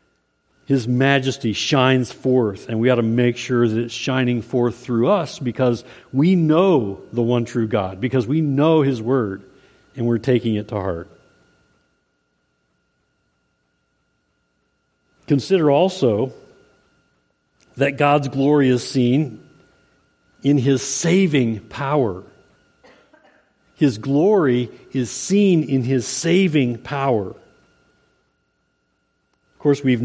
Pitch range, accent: 115-140 Hz, American